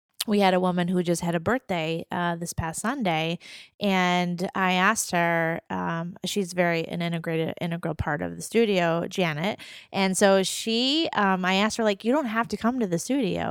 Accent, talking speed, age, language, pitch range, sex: American, 195 wpm, 20-39, English, 170-195 Hz, female